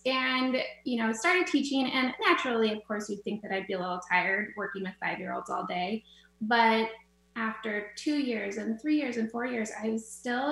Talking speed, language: 200 wpm, English